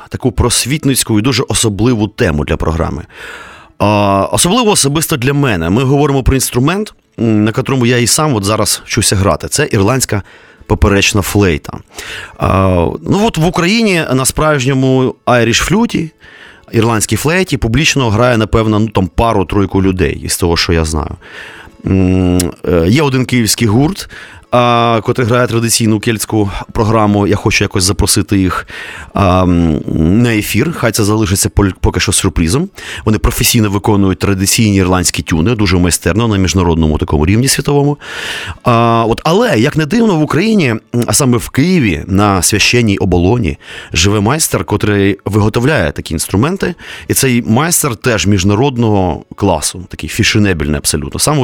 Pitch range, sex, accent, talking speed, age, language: 95-125 Hz, male, native, 135 wpm, 30-49, Ukrainian